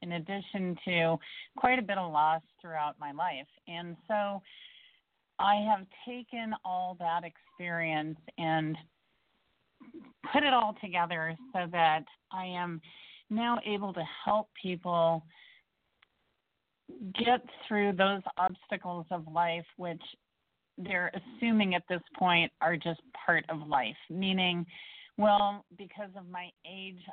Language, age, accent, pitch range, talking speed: English, 40-59, American, 160-200 Hz, 125 wpm